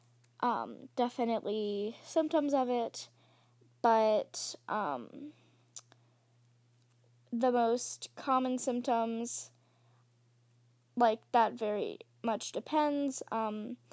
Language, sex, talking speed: English, female, 75 wpm